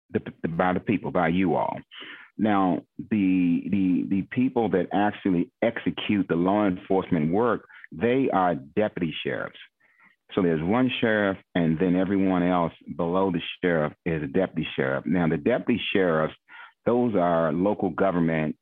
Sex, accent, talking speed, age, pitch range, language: male, American, 150 wpm, 40-59, 85-100 Hz, English